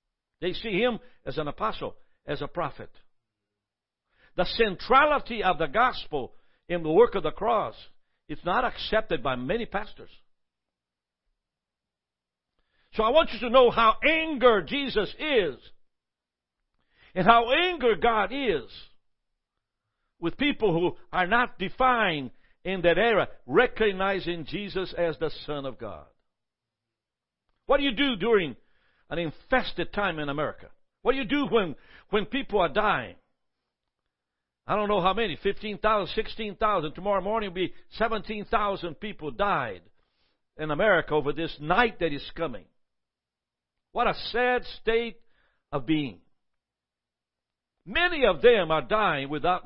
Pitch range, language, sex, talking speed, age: 160-235 Hz, English, male, 135 wpm, 60-79